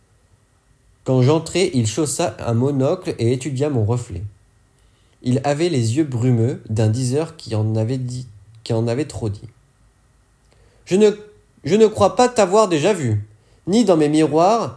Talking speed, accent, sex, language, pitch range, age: 140 wpm, French, male, French, 105-160 Hz, 30-49